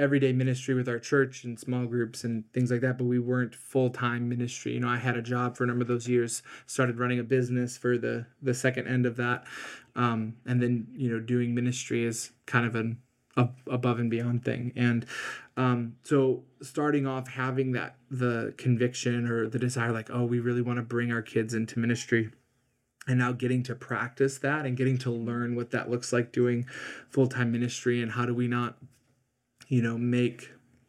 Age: 20-39